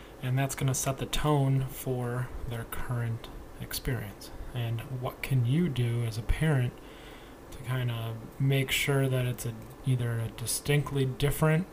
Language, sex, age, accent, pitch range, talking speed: English, male, 20-39, American, 115-140 Hz, 160 wpm